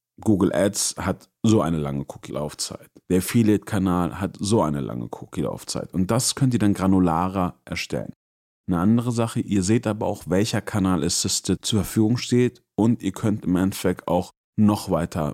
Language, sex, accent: German, male, German